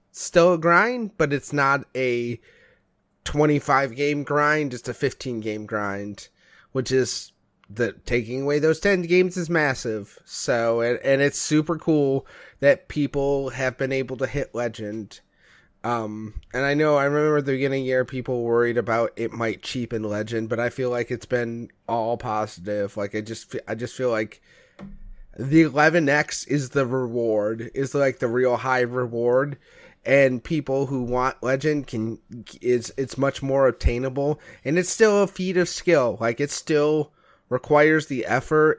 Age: 30-49